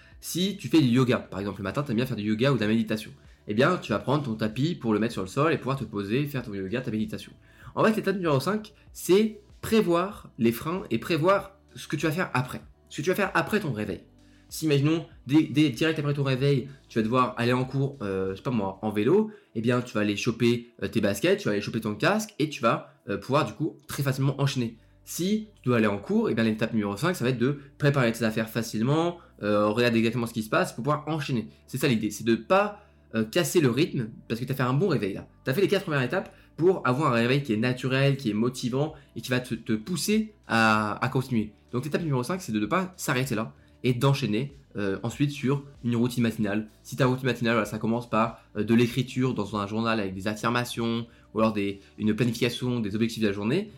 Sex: male